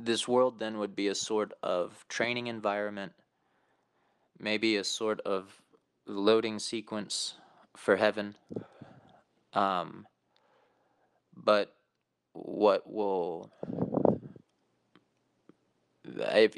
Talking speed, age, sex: 85 wpm, 20-39, male